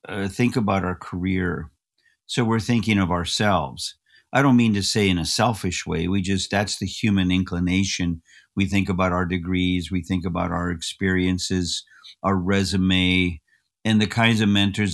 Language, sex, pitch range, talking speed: English, male, 90-110 Hz, 170 wpm